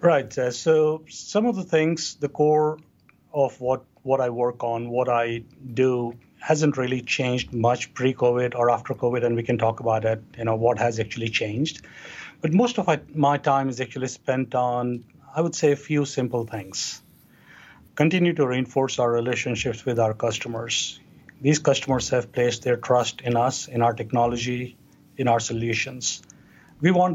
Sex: male